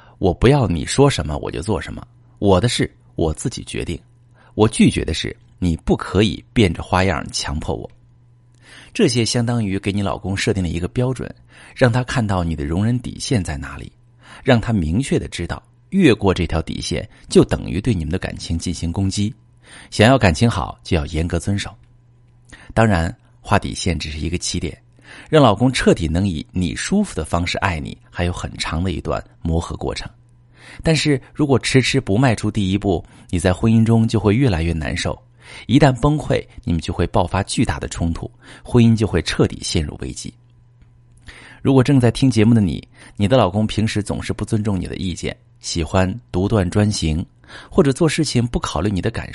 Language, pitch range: Chinese, 90-120 Hz